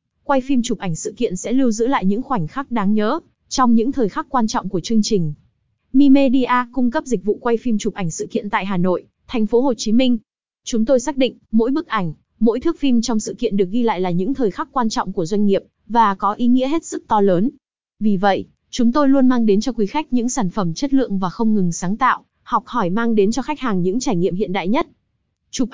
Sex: female